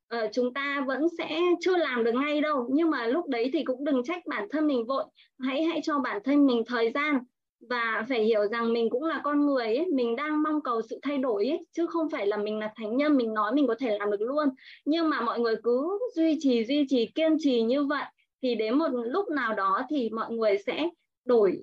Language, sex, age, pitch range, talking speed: Vietnamese, female, 20-39, 230-305 Hz, 245 wpm